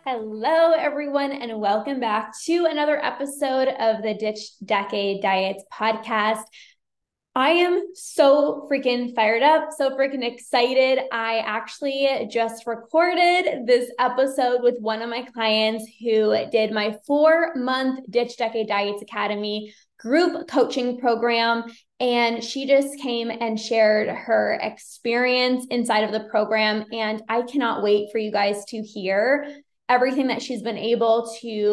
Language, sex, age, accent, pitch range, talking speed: English, female, 20-39, American, 220-260 Hz, 135 wpm